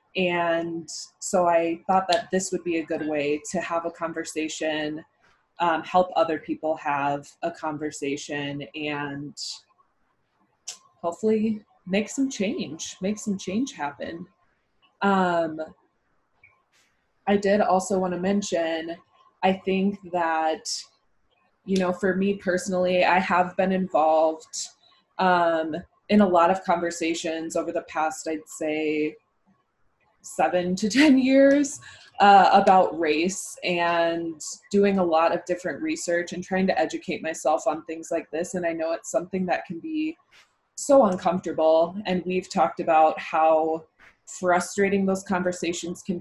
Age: 20-39